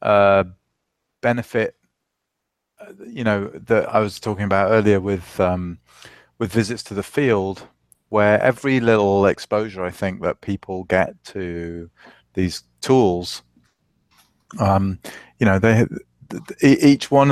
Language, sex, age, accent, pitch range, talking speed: English, male, 30-49, British, 95-115 Hz, 135 wpm